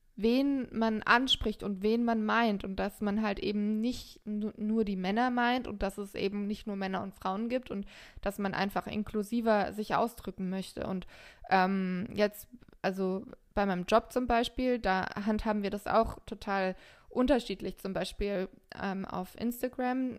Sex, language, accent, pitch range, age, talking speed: female, German, German, 195-230 Hz, 20-39, 165 wpm